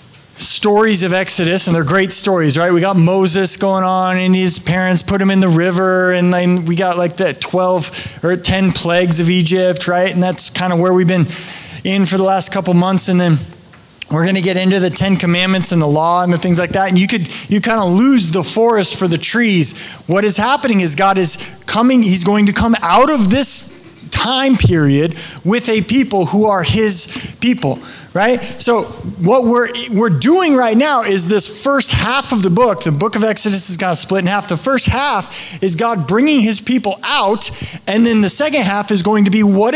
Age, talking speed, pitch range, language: 20-39, 215 wpm, 180-225 Hz, English